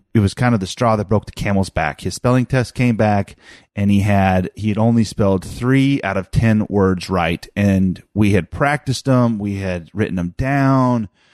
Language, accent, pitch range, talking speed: English, American, 95-120 Hz, 205 wpm